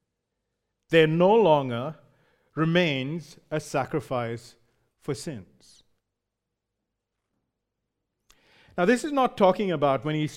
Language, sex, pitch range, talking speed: English, male, 150-195 Hz, 95 wpm